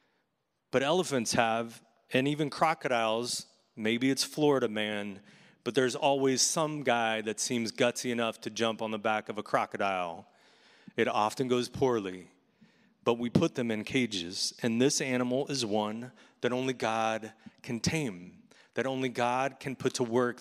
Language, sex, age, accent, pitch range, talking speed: English, male, 30-49, American, 120-165 Hz, 160 wpm